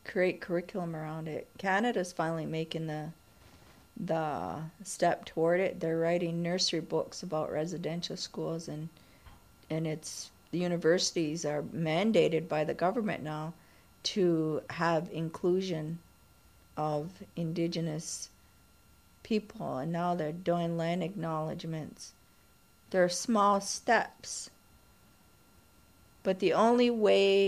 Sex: female